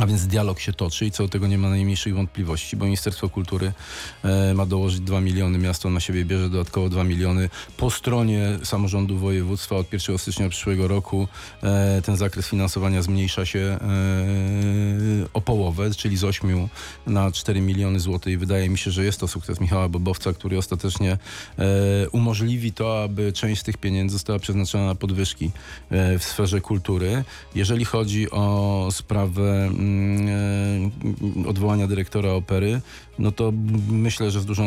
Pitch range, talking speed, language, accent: 95-105 Hz, 155 wpm, Polish, native